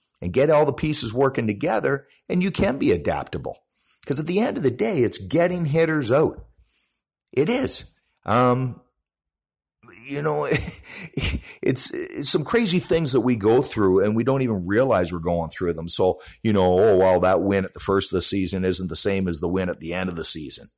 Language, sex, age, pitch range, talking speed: English, male, 40-59, 95-150 Hz, 205 wpm